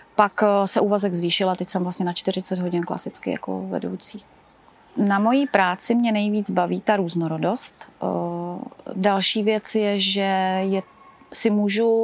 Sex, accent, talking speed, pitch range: female, native, 135 wpm, 190-215 Hz